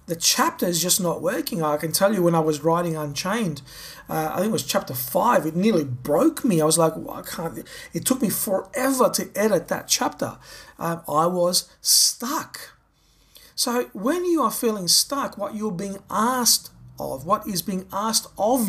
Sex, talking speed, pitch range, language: male, 195 wpm, 170-225 Hz, English